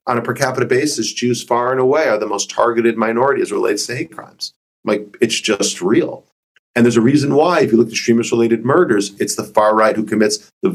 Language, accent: English, American